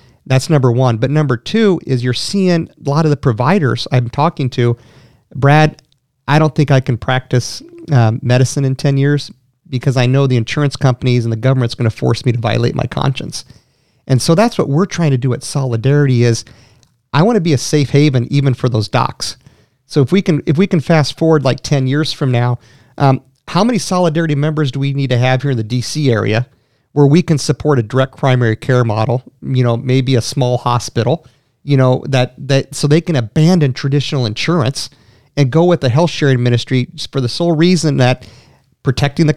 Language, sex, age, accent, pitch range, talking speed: English, male, 40-59, American, 125-155 Hz, 205 wpm